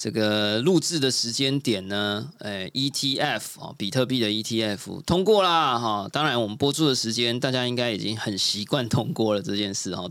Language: Chinese